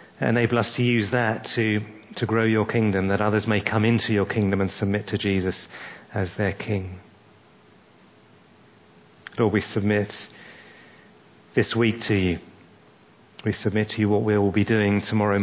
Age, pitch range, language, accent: 40-59, 100-110 Hz, English, British